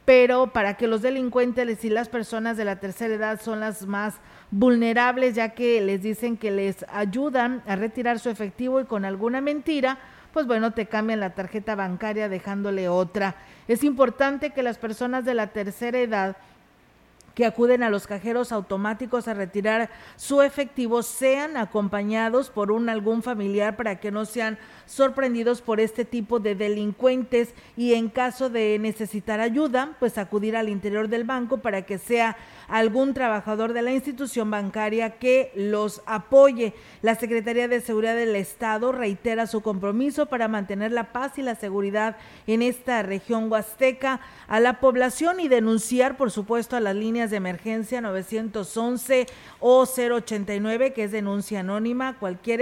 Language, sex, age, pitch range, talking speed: Spanish, female, 40-59, 215-250 Hz, 160 wpm